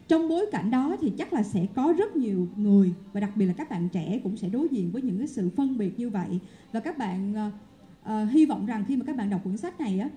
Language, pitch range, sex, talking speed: Vietnamese, 195-265 Hz, female, 285 wpm